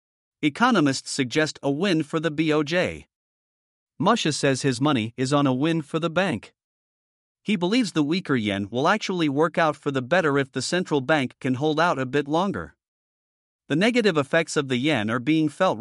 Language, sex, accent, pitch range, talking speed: English, male, American, 130-170 Hz, 185 wpm